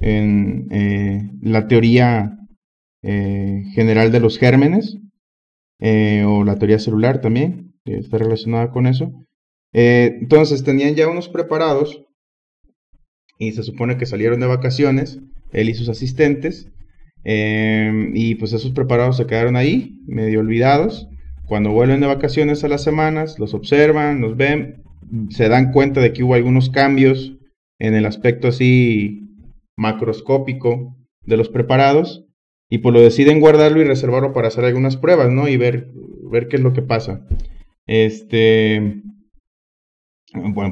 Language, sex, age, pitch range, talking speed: Spanish, male, 30-49, 110-135 Hz, 140 wpm